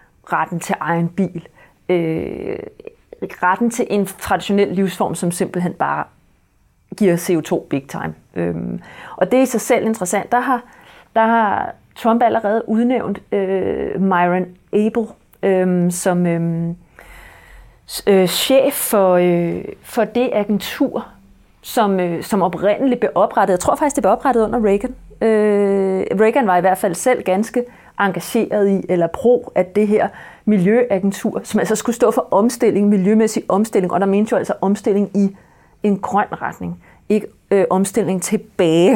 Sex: female